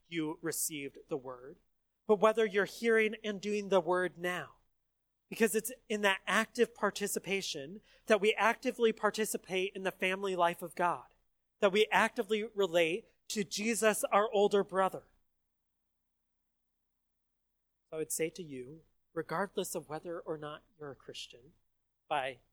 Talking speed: 140 wpm